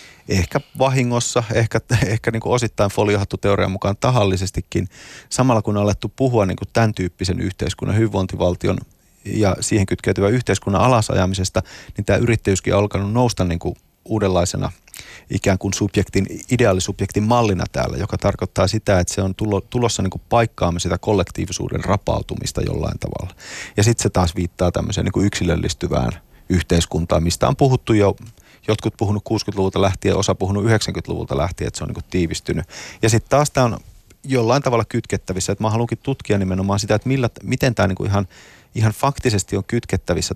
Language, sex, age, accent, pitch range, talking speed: Finnish, male, 30-49, native, 95-115 Hz, 155 wpm